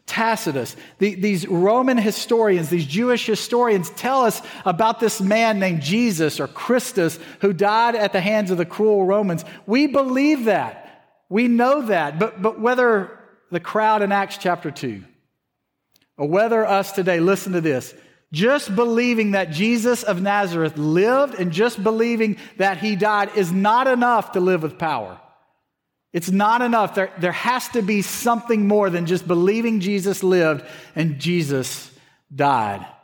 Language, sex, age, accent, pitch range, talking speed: English, male, 40-59, American, 175-230 Hz, 155 wpm